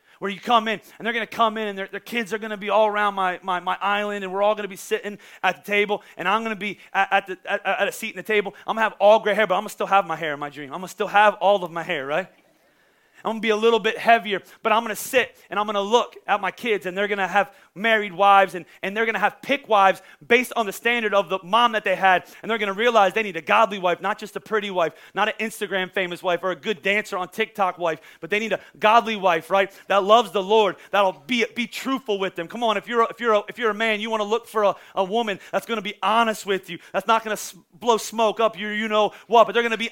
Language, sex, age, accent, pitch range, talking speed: English, male, 30-49, American, 195-230 Hz, 315 wpm